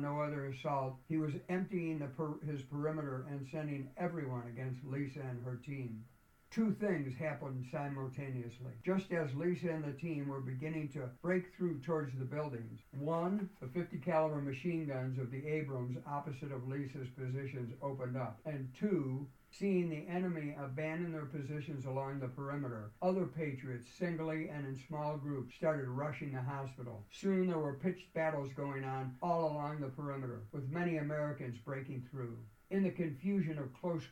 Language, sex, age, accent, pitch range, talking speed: English, male, 60-79, American, 130-160 Hz, 160 wpm